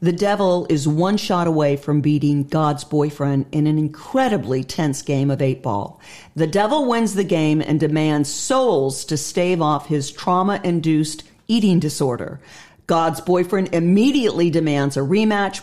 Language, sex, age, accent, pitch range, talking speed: English, female, 50-69, American, 150-200 Hz, 155 wpm